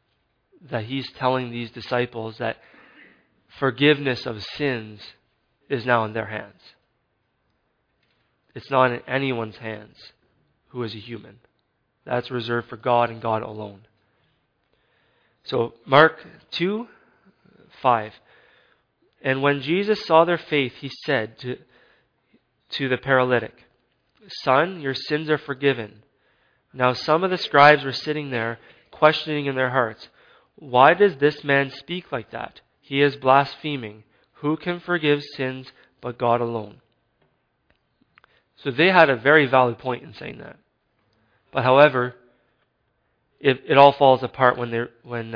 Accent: American